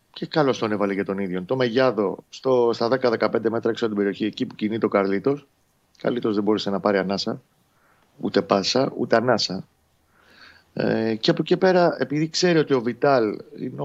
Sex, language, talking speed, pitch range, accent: male, Greek, 180 wpm, 105-145 Hz, native